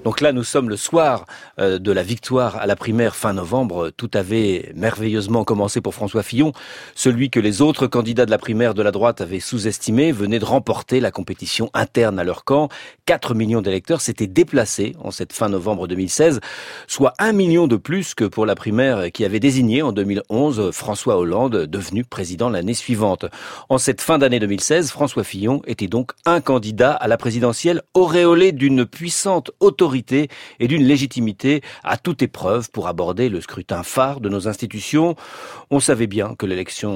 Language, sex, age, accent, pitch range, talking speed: French, male, 40-59, French, 105-140 Hz, 180 wpm